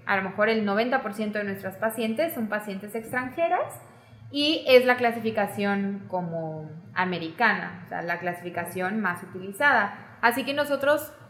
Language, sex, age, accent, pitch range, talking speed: Spanish, female, 20-39, Mexican, 180-250 Hz, 140 wpm